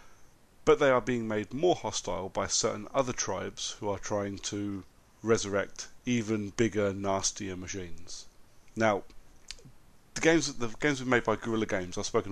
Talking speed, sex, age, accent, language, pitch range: 150 wpm, male, 30-49, British, English, 100-130 Hz